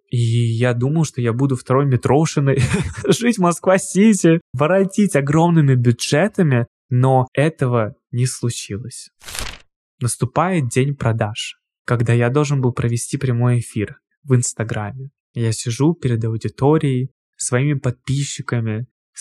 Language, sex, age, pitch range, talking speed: Russian, male, 20-39, 125-150 Hz, 115 wpm